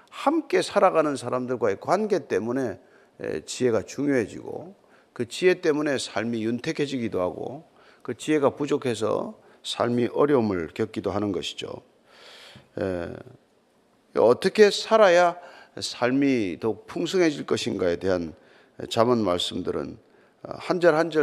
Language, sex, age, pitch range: Korean, male, 40-59, 125-210 Hz